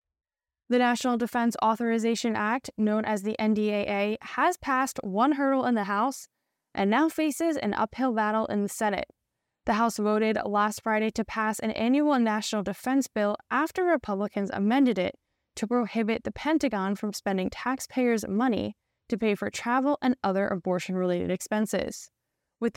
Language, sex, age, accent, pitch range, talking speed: English, female, 10-29, American, 205-250 Hz, 155 wpm